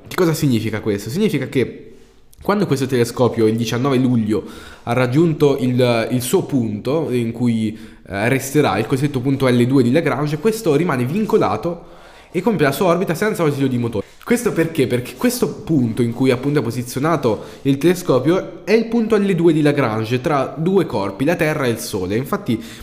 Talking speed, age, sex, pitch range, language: 175 wpm, 20-39, male, 115-165 Hz, Italian